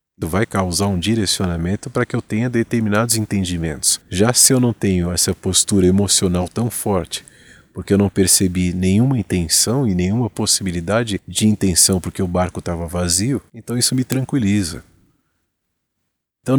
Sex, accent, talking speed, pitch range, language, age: male, Brazilian, 150 wpm, 90-115 Hz, Portuguese, 40-59